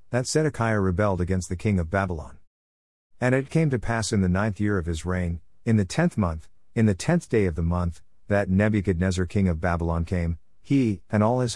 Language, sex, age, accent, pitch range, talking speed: English, male, 50-69, American, 85-120 Hz, 215 wpm